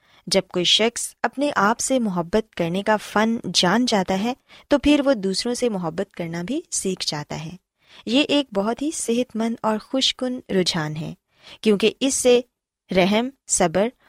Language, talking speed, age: Urdu, 165 wpm, 20-39